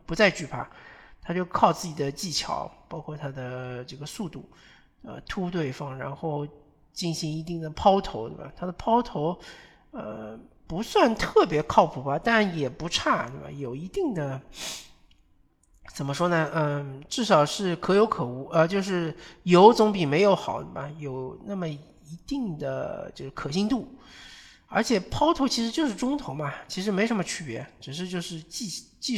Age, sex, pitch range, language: 50-69, male, 145-195 Hz, Chinese